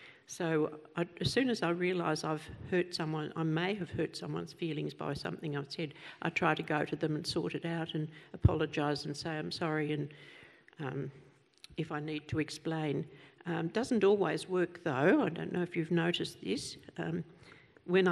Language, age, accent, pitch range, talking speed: English, 60-79, Australian, 150-175 Hz, 185 wpm